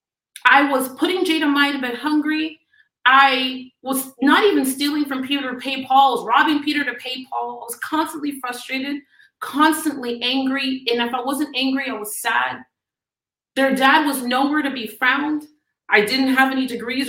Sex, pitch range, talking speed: female, 250-310 Hz, 170 wpm